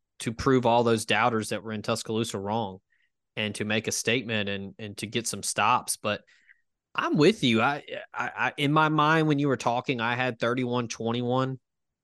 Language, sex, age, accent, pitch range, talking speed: English, male, 20-39, American, 110-125 Hz, 195 wpm